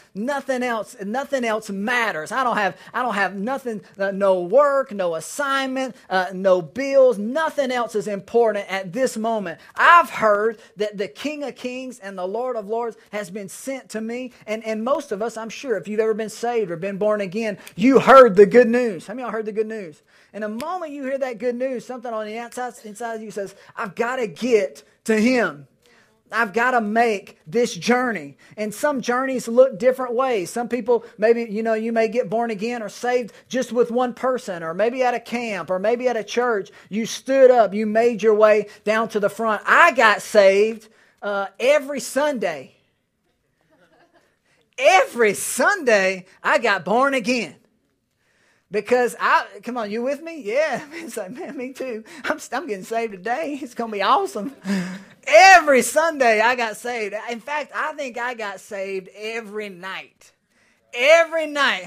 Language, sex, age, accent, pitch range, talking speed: English, male, 30-49, American, 195-250 Hz, 190 wpm